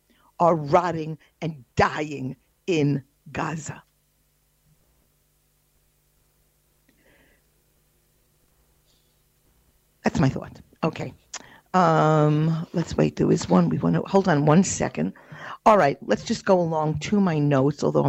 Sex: female